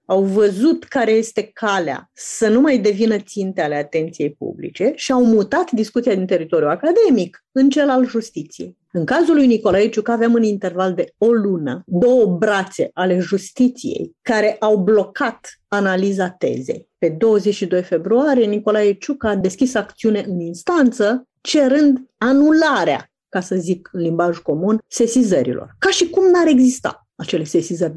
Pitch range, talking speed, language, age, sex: 185-250 Hz, 150 wpm, Romanian, 30-49, female